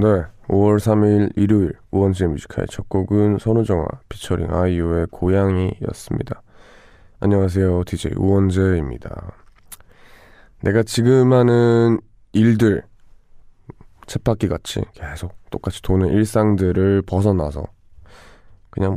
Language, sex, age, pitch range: Korean, male, 20-39, 90-110 Hz